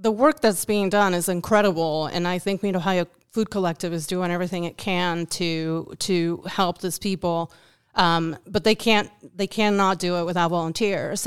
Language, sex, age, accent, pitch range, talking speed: English, female, 30-49, American, 175-200 Hz, 180 wpm